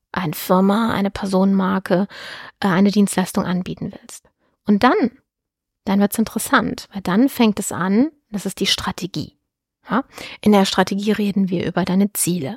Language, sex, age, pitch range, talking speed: German, female, 30-49, 185-215 Hz, 155 wpm